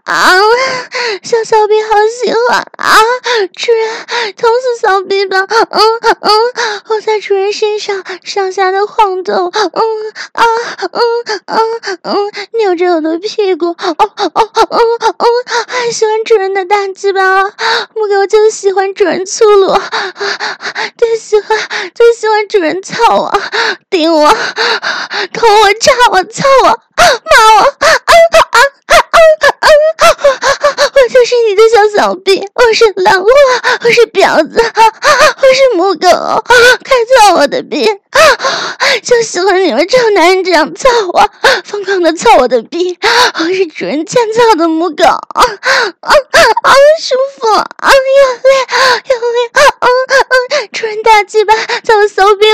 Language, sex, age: Chinese, female, 20-39